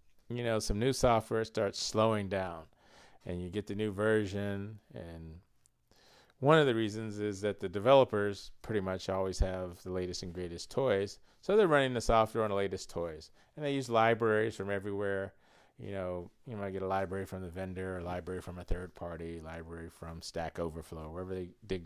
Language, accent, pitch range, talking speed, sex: English, American, 90-110 Hz, 195 wpm, male